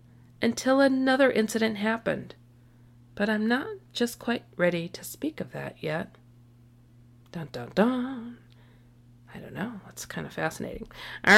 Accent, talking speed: American, 135 wpm